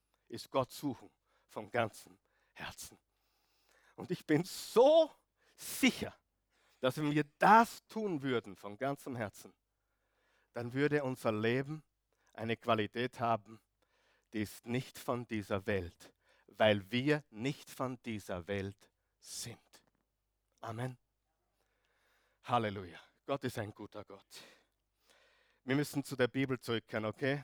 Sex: male